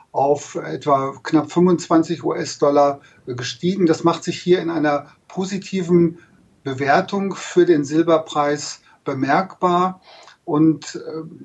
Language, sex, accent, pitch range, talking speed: German, male, German, 145-170 Hz, 100 wpm